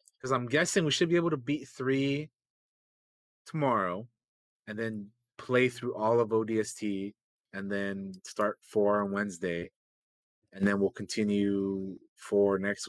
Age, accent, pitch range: 30-49, American, 105-145 Hz